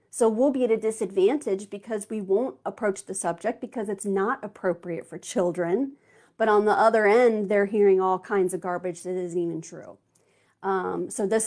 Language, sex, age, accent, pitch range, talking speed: English, female, 40-59, American, 180-210 Hz, 190 wpm